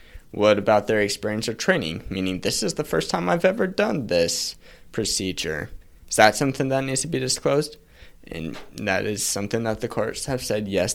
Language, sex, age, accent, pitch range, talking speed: English, male, 20-39, American, 95-115 Hz, 190 wpm